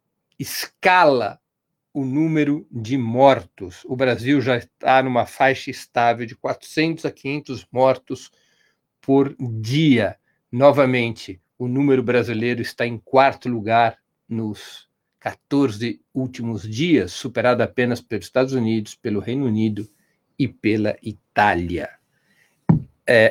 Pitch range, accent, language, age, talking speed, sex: 115-145 Hz, Brazilian, Portuguese, 60-79, 110 wpm, male